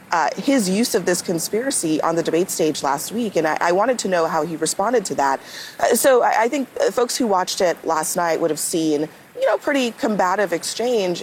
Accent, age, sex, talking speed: American, 30-49, female, 225 wpm